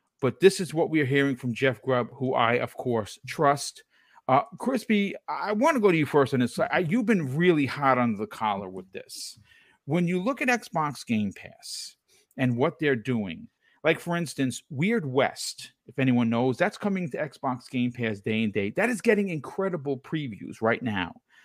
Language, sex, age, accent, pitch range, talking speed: English, male, 50-69, American, 120-170 Hz, 200 wpm